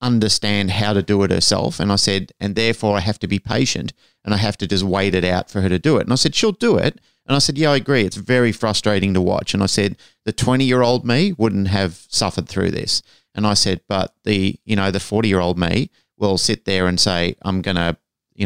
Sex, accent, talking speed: male, Australian, 260 wpm